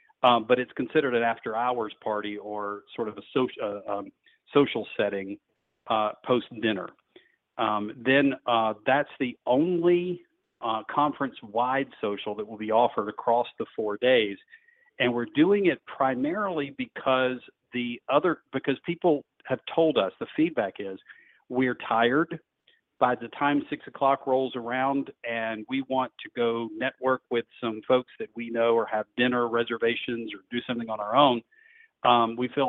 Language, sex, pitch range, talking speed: English, male, 115-145 Hz, 160 wpm